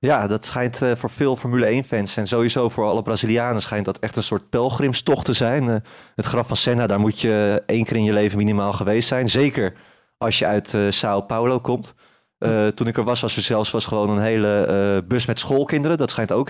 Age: 20-39